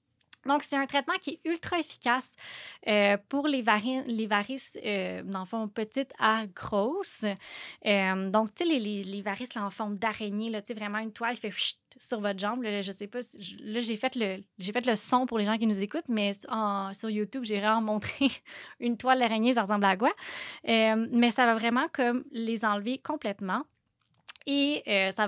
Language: French